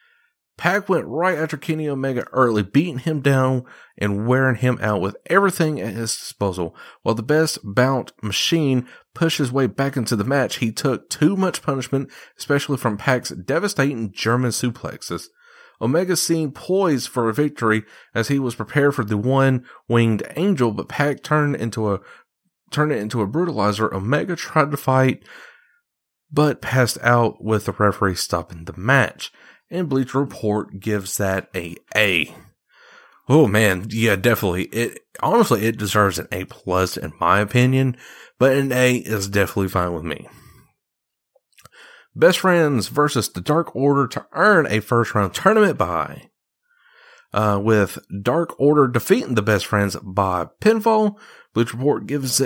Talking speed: 155 wpm